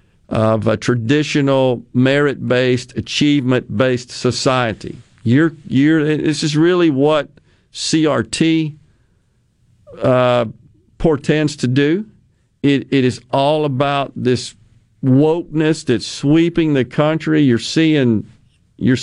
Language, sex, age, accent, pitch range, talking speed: English, male, 50-69, American, 120-150 Hz, 100 wpm